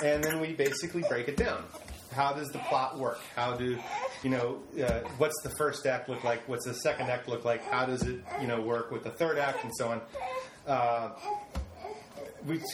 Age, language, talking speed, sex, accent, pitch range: 30-49, English, 205 wpm, male, American, 125-150 Hz